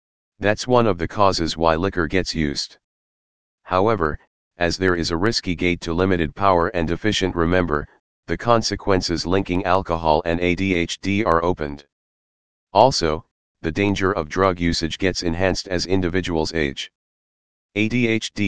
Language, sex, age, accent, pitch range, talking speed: English, male, 40-59, American, 80-95 Hz, 135 wpm